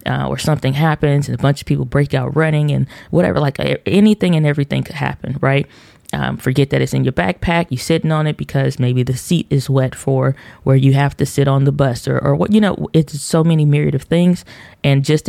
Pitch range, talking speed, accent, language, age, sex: 135-160 Hz, 240 wpm, American, English, 20-39, female